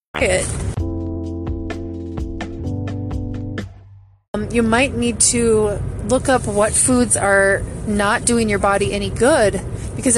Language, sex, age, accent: English, female, 30-49, American